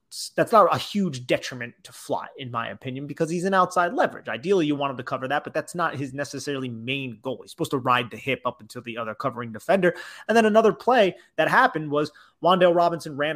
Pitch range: 130-170 Hz